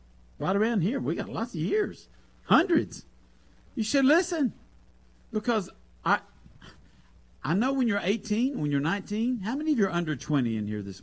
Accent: American